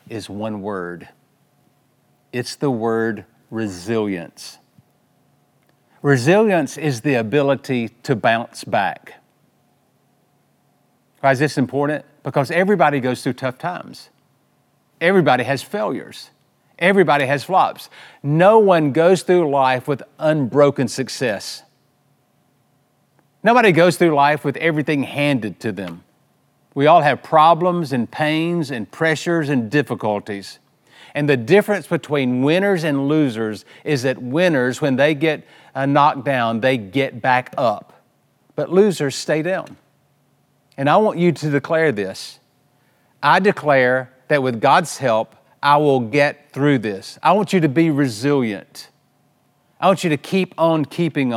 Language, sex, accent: English, male, American